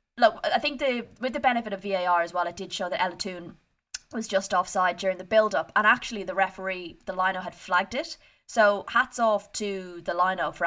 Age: 20-39